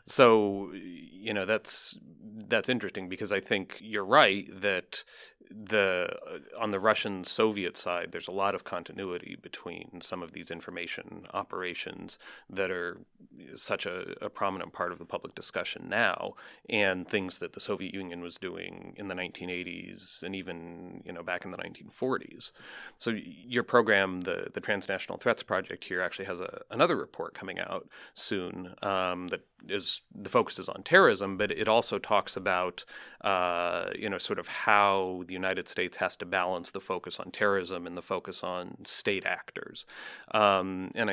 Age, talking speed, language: 30-49, 165 wpm, English